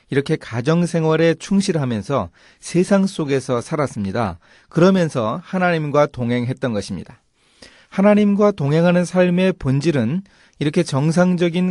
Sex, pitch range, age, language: male, 120-175 Hz, 40-59, Korean